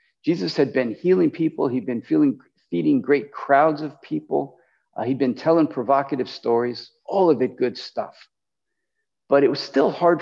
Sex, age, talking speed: male, 50-69, 165 wpm